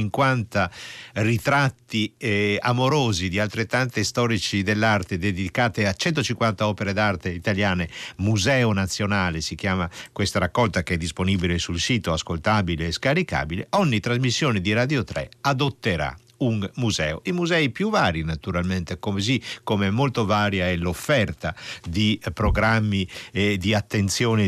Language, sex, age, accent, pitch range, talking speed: Italian, male, 50-69, native, 90-120 Hz, 130 wpm